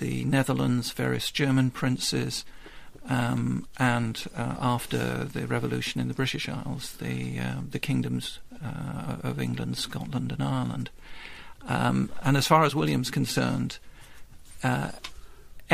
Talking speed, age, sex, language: 125 wpm, 50-69, male, English